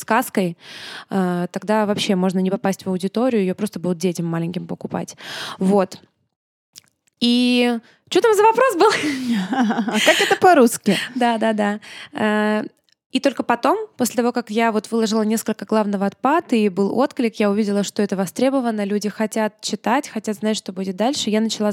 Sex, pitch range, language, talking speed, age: female, 200-245 Hz, Russian, 150 wpm, 20-39